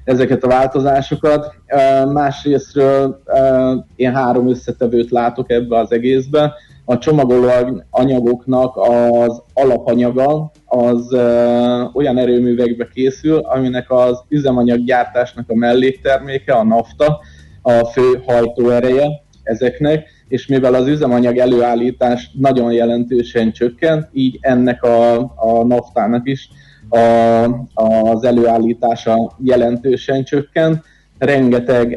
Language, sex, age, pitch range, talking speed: Hungarian, male, 30-49, 120-130 Hz, 100 wpm